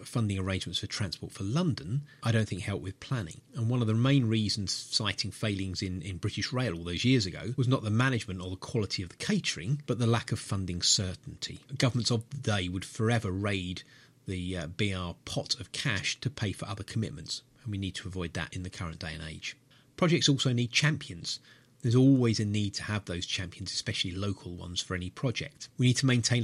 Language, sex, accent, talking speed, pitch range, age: English, male, British, 220 wpm, 100-135 Hz, 30-49